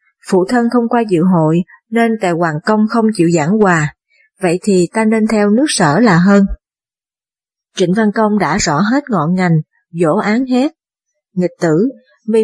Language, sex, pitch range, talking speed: Vietnamese, female, 180-230 Hz, 180 wpm